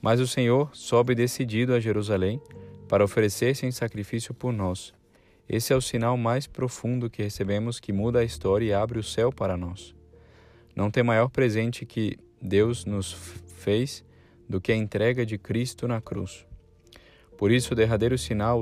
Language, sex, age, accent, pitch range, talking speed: Portuguese, male, 20-39, Brazilian, 100-120 Hz, 170 wpm